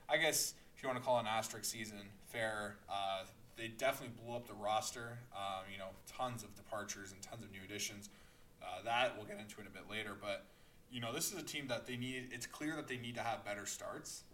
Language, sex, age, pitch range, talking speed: English, male, 20-39, 100-120 Hz, 240 wpm